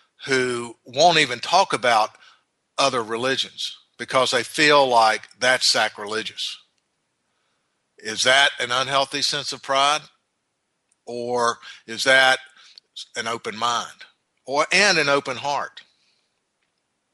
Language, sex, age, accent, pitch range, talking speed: English, male, 60-79, American, 115-135 Hz, 105 wpm